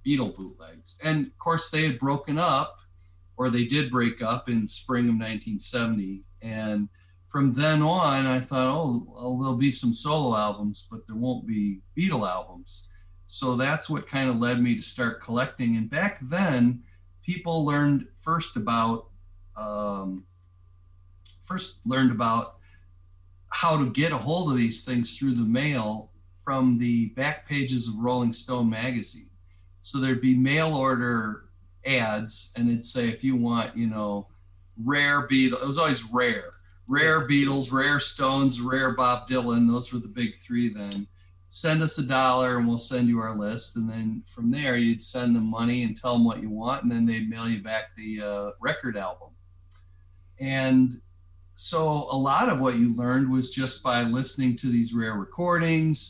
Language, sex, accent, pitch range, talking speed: English, male, American, 105-130 Hz, 170 wpm